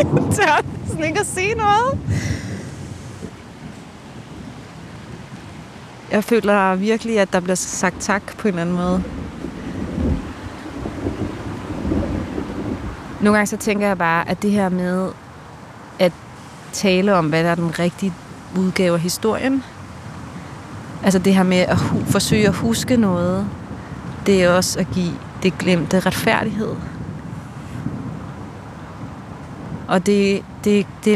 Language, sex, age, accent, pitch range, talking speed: Danish, female, 30-49, native, 170-200 Hz, 115 wpm